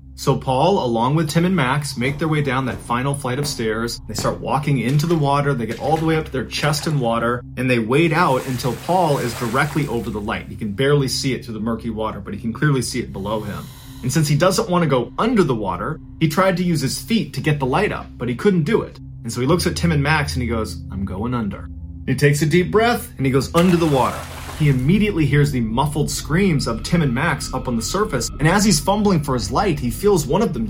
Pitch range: 120-175 Hz